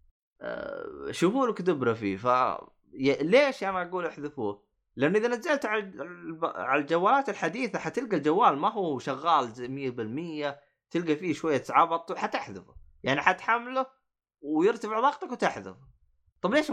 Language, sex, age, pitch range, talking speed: Arabic, male, 20-39, 120-185 Hz, 115 wpm